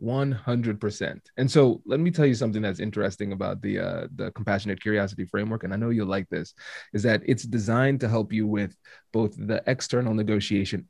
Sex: male